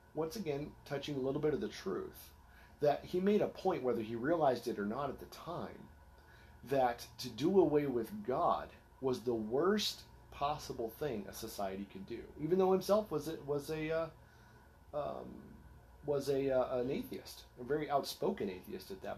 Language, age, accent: English, 40-59, American